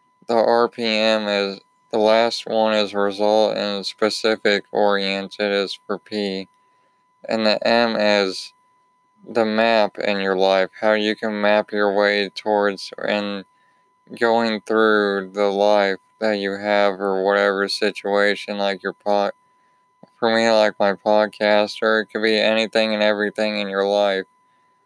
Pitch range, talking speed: 105-115 Hz, 140 wpm